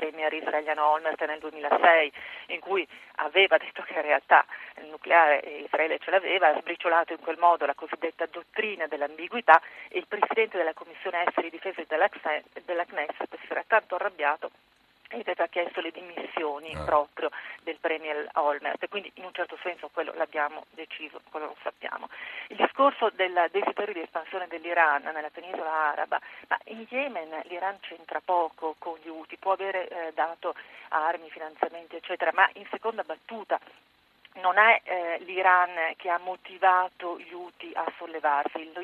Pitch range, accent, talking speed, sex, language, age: 160-190 Hz, native, 155 wpm, female, Italian, 40-59